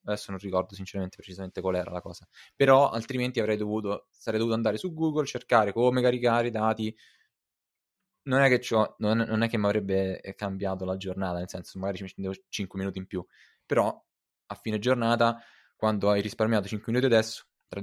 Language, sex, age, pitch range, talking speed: Italian, male, 20-39, 105-120 Hz, 185 wpm